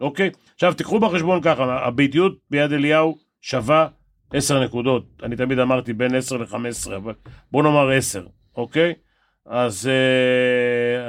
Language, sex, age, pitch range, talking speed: Hebrew, male, 40-59, 125-160 Hz, 130 wpm